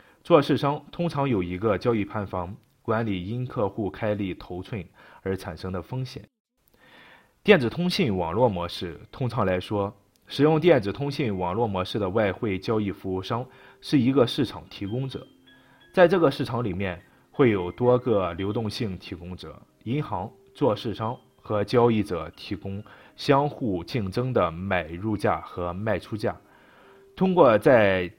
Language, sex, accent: Chinese, male, native